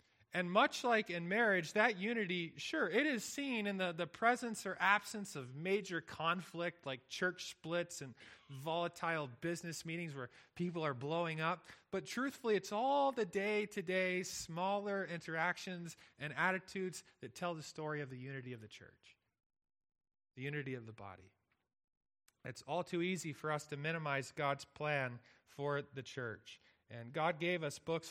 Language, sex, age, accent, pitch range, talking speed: English, male, 30-49, American, 140-185 Hz, 160 wpm